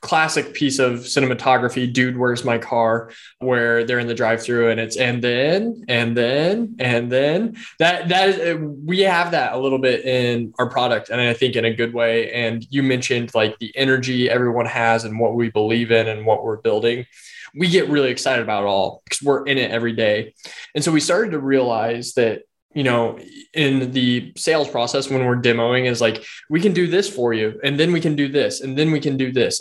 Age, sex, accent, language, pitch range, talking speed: 20-39, male, American, English, 120-150 Hz, 215 wpm